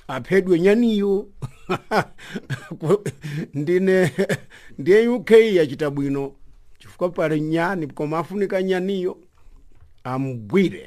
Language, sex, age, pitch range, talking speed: English, male, 50-69, 150-190 Hz, 75 wpm